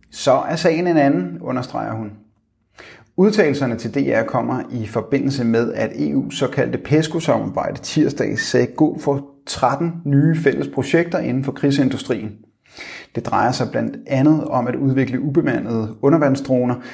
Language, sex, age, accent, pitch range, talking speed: Danish, male, 30-49, native, 125-150 Hz, 140 wpm